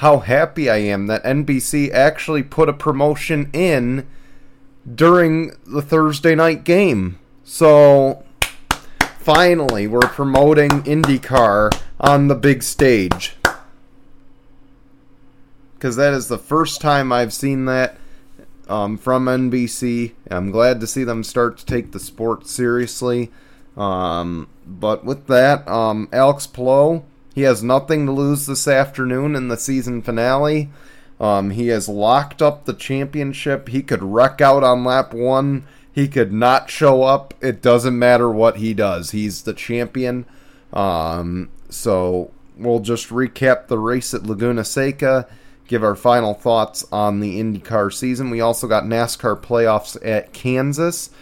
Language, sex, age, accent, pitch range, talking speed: English, male, 30-49, American, 115-140 Hz, 140 wpm